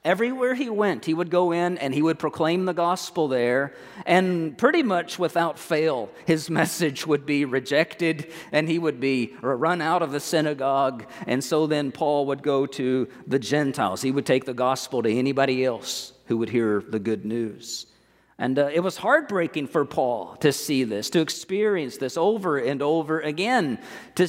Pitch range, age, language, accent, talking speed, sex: 135-185 Hz, 50-69, English, American, 185 wpm, male